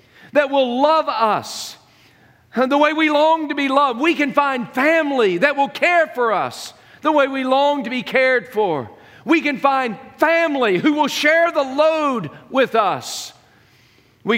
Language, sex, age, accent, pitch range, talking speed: English, male, 50-69, American, 205-275 Hz, 165 wpm